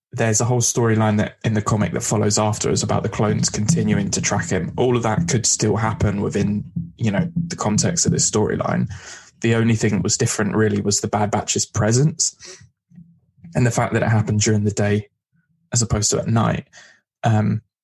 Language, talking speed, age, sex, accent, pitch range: English, 200 wpm, 10-29, male, British, 105-120 Hz